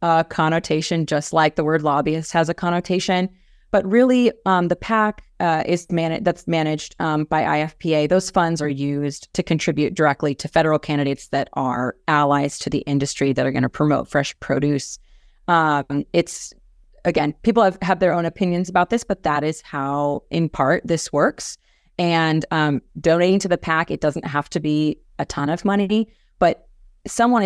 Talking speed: 180 wpm